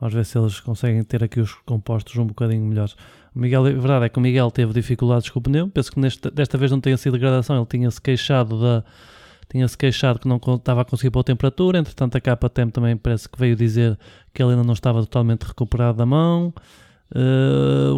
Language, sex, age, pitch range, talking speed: Portuguese, male, 20-39, 115-135 Hz, 220 wpm